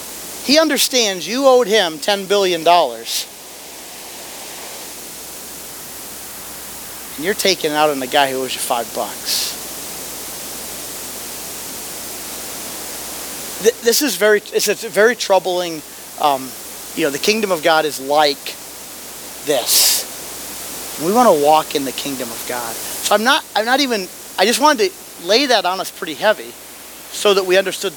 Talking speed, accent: 145 wpm, American